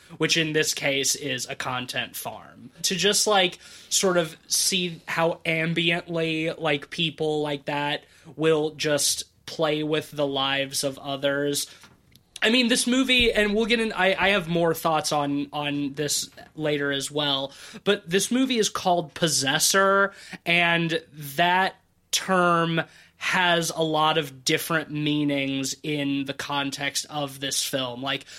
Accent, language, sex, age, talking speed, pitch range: American, English, male, 20-39, 145 wpm, 140-175 Hz